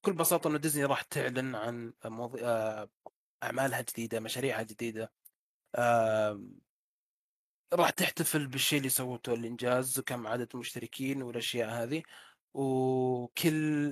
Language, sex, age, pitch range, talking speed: Arabic, male, 20-39, 115-135 Hz, 110 wpm